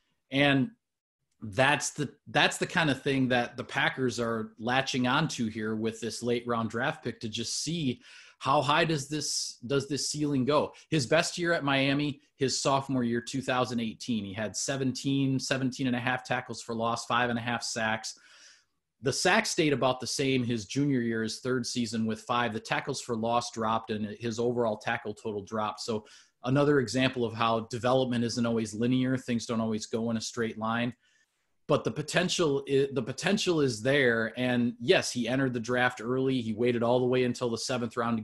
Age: 30-49